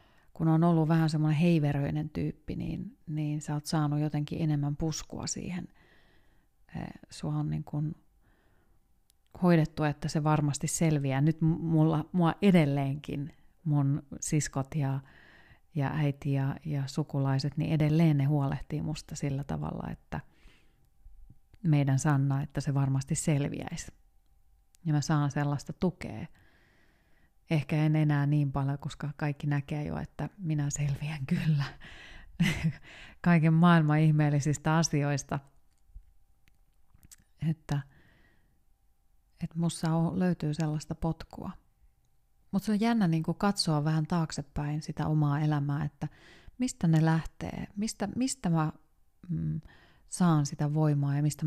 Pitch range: 140-160 Hz